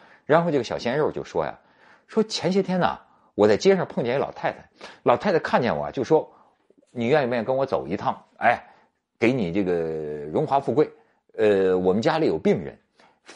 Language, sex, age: Chinese, male, 50-69